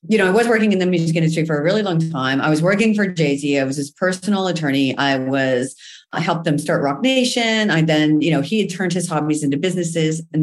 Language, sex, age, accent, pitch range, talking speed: English, female, 40-59, American, 140-175 Hz, 255 wpm